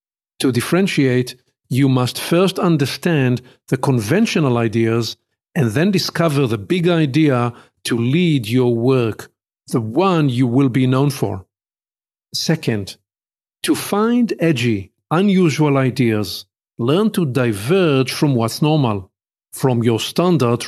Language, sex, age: English, male, 50-69